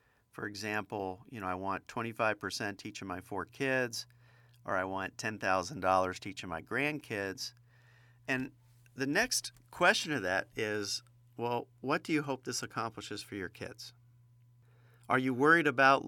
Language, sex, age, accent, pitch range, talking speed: English, male, 50-69, American, 110-130 Hz, 145 wpm